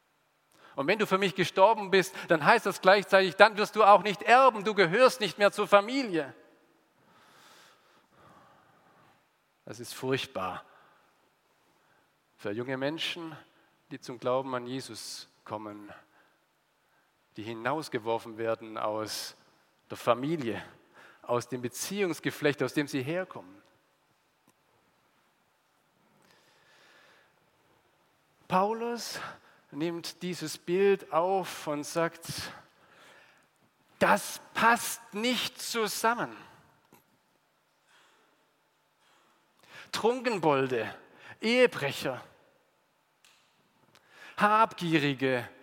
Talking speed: 80 wpm